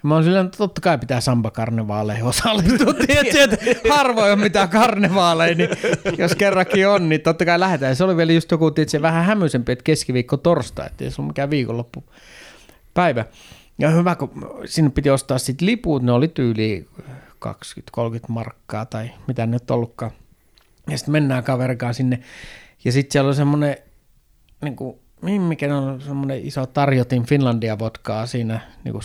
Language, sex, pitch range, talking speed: Finnish, male, 125-170 Hz, 160 wpm